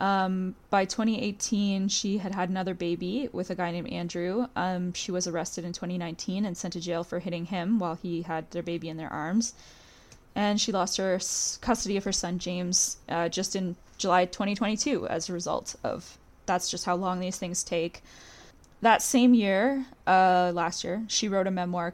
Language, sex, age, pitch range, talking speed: English, female, 20-39, 175-210 Hz, 190 wpm